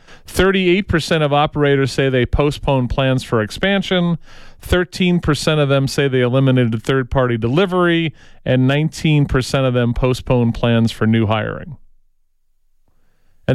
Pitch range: 125-150 Hz